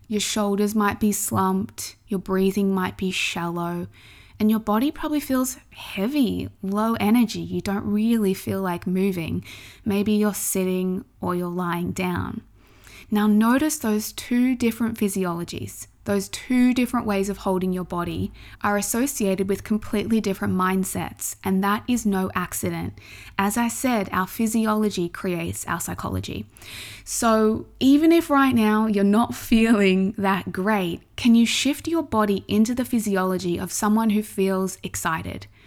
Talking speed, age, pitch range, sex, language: 145 wpm, 20-39, 180-225 Hz, female, English